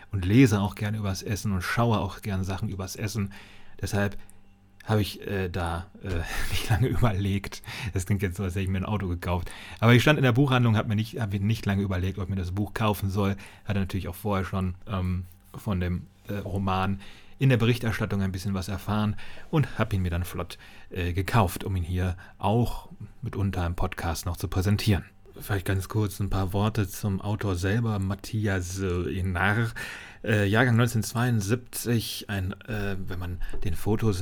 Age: 30-49